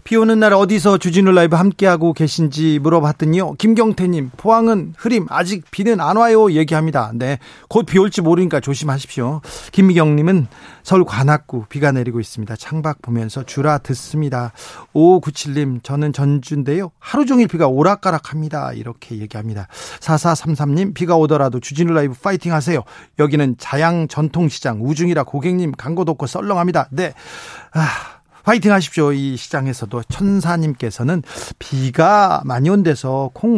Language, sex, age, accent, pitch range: Korean, male, 40-59, native, 130-175 Hz